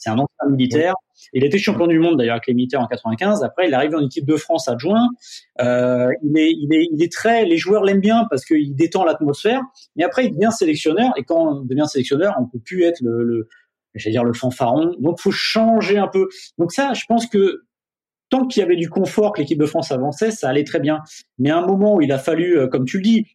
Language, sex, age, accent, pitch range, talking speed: French, male, 30-49, French, 130-195 Hz, 255 wpm